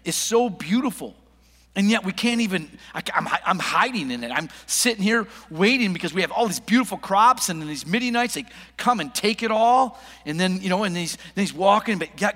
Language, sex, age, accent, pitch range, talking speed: English, male, 50-69, American, 175-240 Hz, 215 wpm